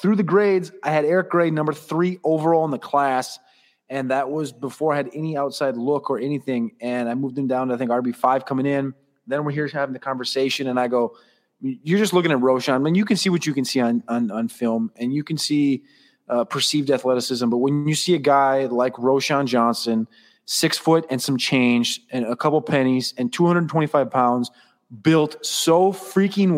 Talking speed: 205 wpm